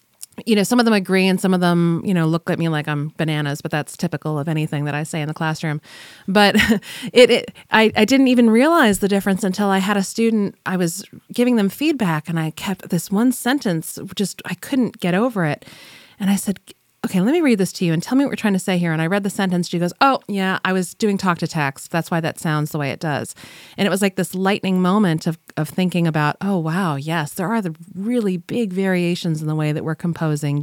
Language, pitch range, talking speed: English, 155-200 Hz, 250 wpm